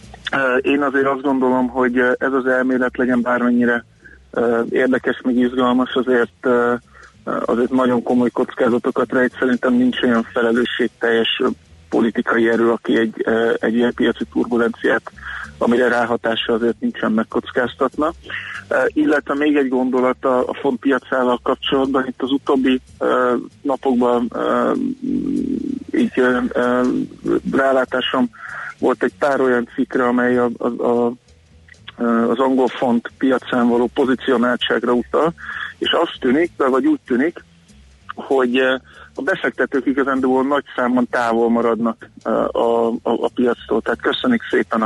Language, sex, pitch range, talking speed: Hungarian, male, 120-130 Hz, 120 wpm